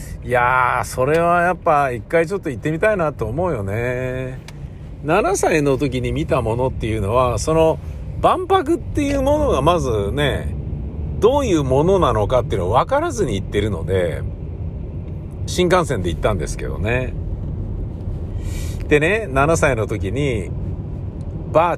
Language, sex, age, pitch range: Japanese, male, 50-69, 90-135 Hz